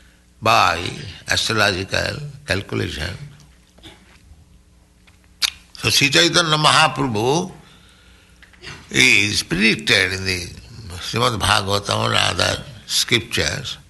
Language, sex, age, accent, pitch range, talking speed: English, male, 60-79, Indian, 80-130 Hz, 70 wpm